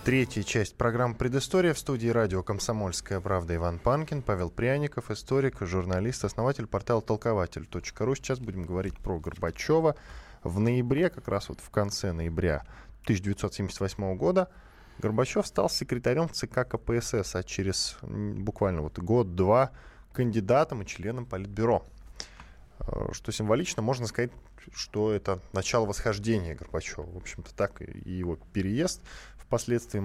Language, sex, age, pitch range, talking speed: Russian, male, 10-29, 95-125 Hz, 125 wpm